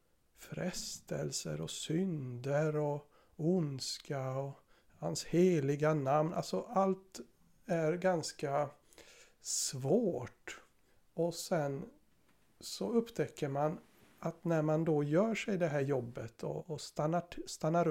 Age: 60-79